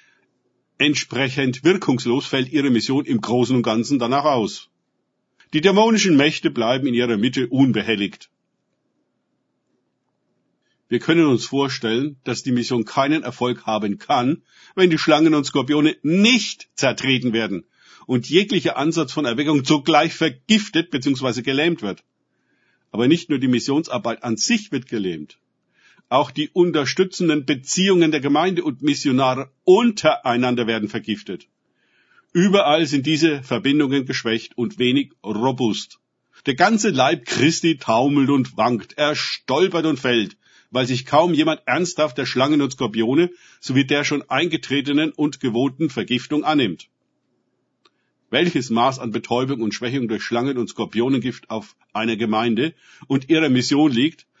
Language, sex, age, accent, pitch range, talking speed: German, male, 50-69, German, 125-155 Hz, 135 wpm